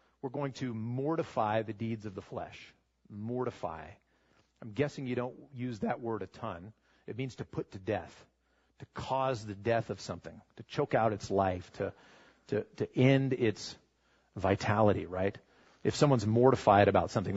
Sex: male